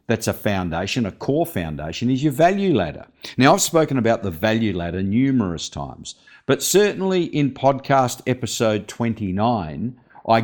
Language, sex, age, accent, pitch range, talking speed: English, male, 50-69, Australian, 95-130 Hz, 150 wpm